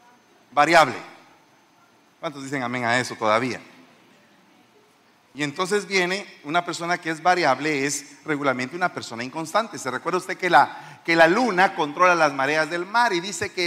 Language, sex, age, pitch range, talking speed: Spanish, male, 40-59, 145-200 Hz, 160 wpm